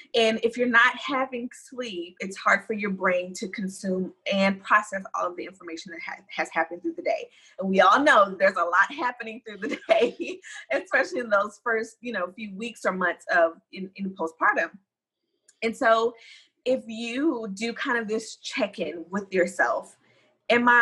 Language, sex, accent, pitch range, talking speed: English, female, American, 180-235 Hz, 180 wpm